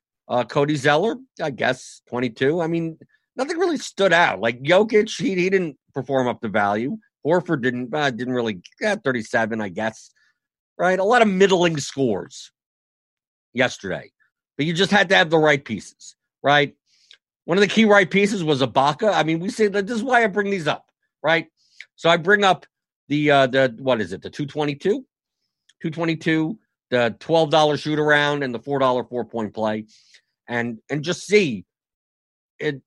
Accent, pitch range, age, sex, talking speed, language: American, 130-195 Hz, 50-69, male, 185 wpm, English